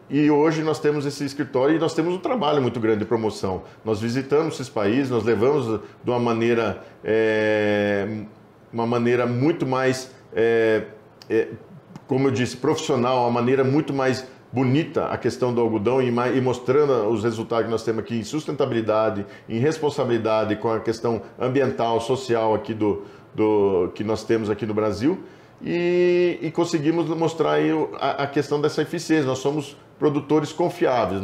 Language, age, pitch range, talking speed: Portuguese, 50-69, 115-140 Hz, 165 wpm